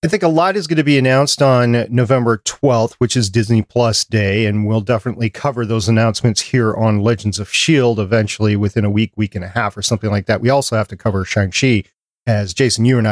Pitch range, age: 110-135 Hz, 40-59